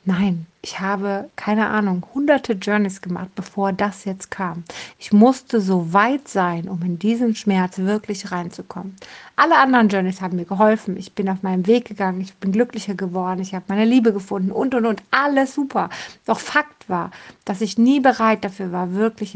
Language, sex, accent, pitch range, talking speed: German, female, German, 190-230 Hz, 185 wpm